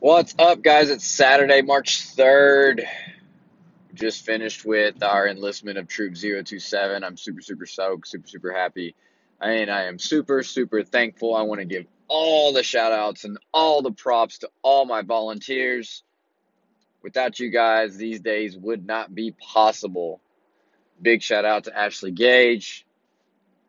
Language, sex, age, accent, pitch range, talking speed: English, male, 20-39, American, 100-120 Hz, 150 wpm